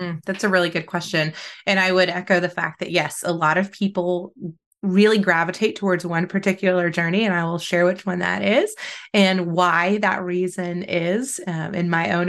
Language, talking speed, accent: English, 195 wpm, American